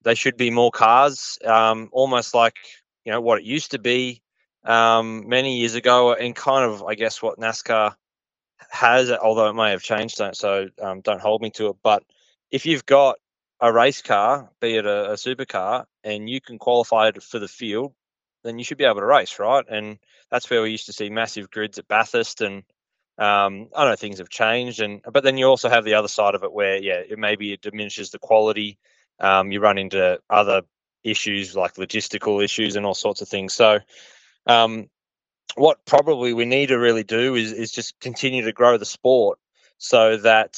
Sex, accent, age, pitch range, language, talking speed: male, Australian, 20-39, 105-120 Hz, English, 205 wpm